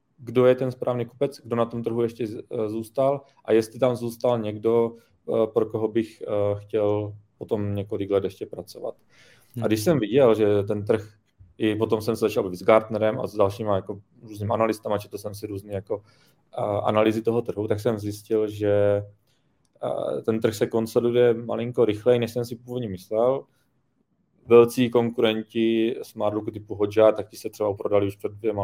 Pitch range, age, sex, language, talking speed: 105-120 Hz, 20-39, male, Czech, 175 wpm